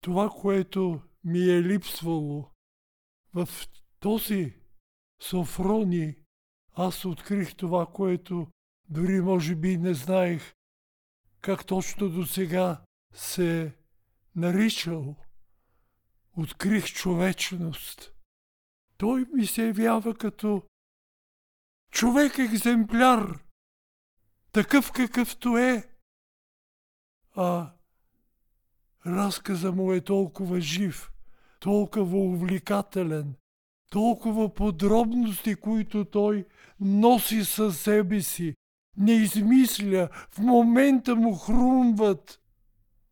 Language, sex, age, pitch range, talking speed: Bulgarian, male, 60-79, 150-205 Hz, 80 wpm